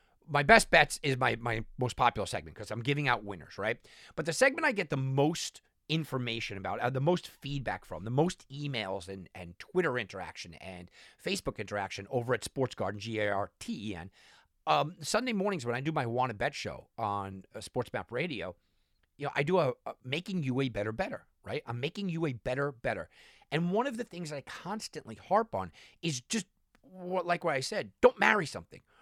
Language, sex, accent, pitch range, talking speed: English, male, American, 115-180 Hz, 210 wpm